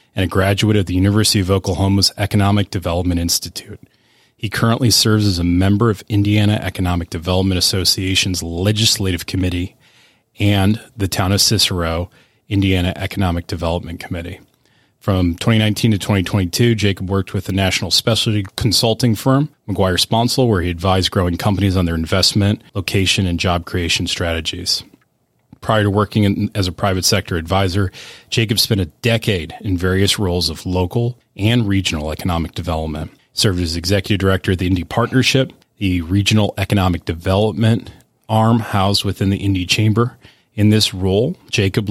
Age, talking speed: 30-49, 145 wpm